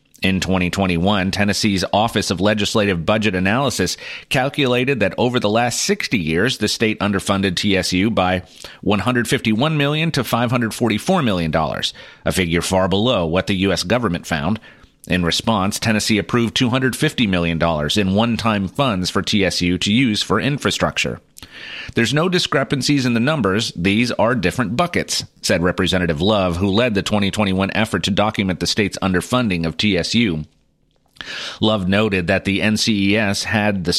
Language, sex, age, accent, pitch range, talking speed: English, male, 30-49, American, 95-120 Hz, 145 wpm